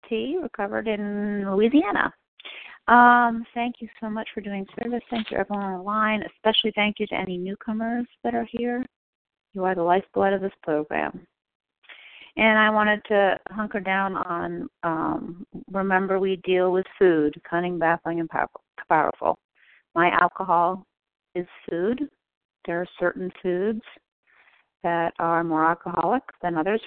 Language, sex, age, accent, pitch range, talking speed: English, female, 40-59, American, 180-225 Hz, 145 wpm